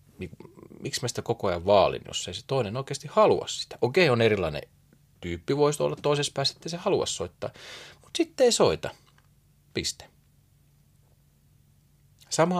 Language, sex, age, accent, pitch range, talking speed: Finnish, male, 30-49, native, 115-160 Hz, 150 wpm